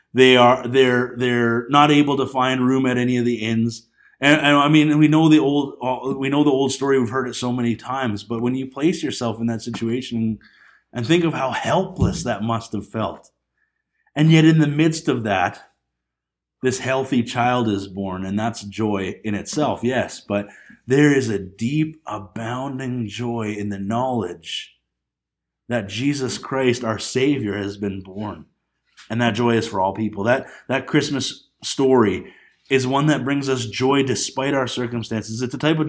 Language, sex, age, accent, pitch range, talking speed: English, male, 30-49, American, 110-140 Hz, 180 wpm